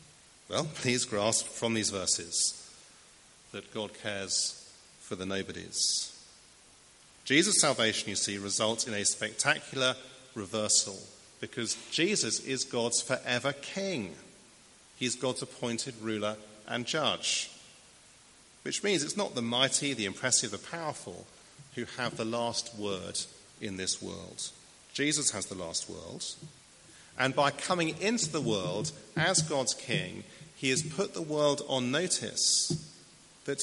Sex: male